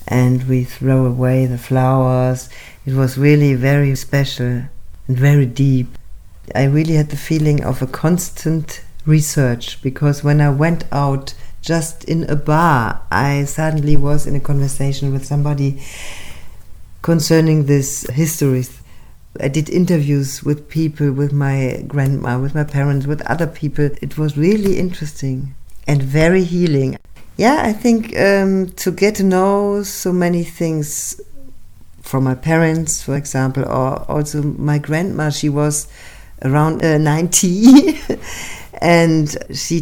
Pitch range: 135-160 Hz